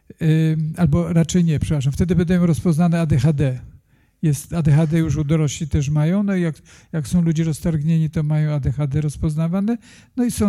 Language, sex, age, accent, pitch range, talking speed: Polish, male, 50-69, native, 150-175 Hz, 165 wpm